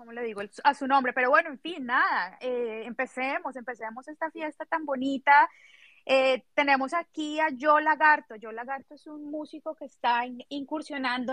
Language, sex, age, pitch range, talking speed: English, female, 20-39, 240-285 Hz, 175 wpm